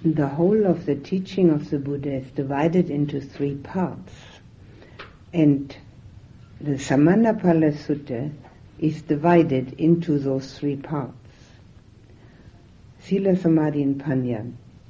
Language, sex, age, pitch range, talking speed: English, female, 60-79, 125-160 Hz, 115 wpm